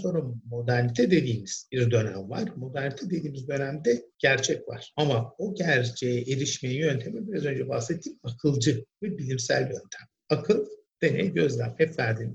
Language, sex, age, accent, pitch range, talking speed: Turkish, male, 50-69, native, 120-155 Hz, 140 wpm